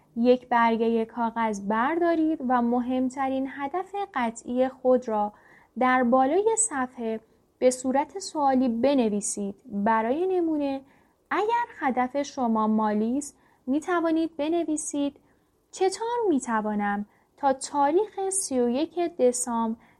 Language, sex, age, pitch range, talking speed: Persian, female, 10-29, 230-310 Hz, 95 wpm